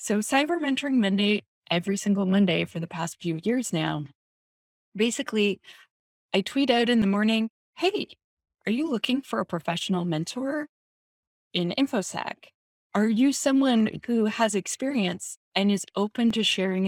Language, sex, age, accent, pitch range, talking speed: English, female, 20-39, American, 185-240 Hz, 145 wpm